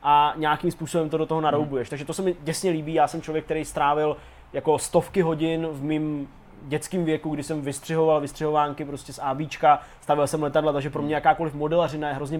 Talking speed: 205 wpm